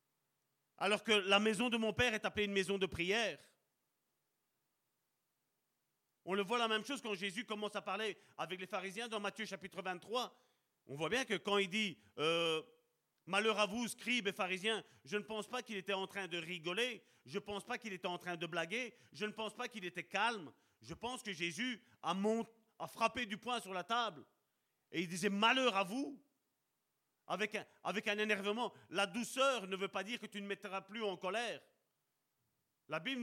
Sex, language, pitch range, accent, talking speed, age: male, French, 190-230 Hz, French, 200 wpm, 40-59